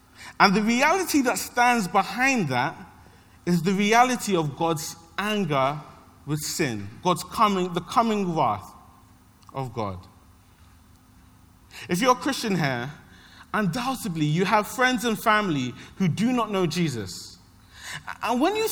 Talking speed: 130 wpm